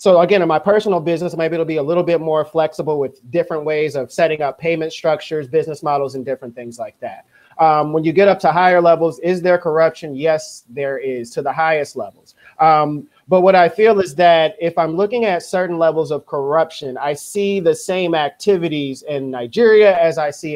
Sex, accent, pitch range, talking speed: male, American, 145-180 Hz, 210 wpm